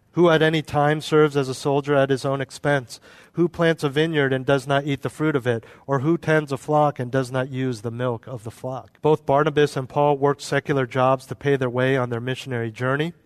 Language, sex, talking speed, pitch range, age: English, male, 240 wpm, 120-140 Hz, 40-59